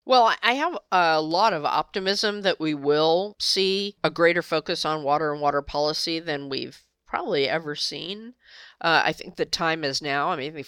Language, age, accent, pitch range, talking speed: English, 50-69, American, 145-200 Hz, 185 wpm